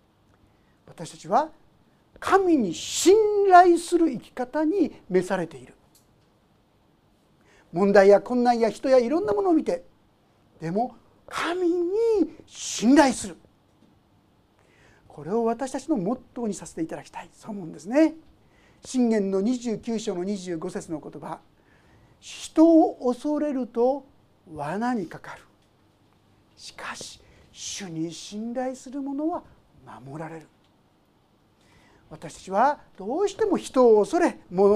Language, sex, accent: Japanese, male, native